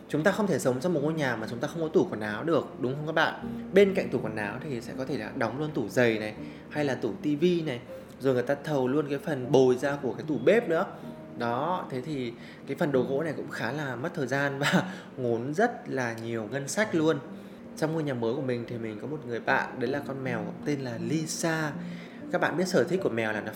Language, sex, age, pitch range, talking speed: Vietnamese, male, 20-39, 115-150 Hz, 270 wpm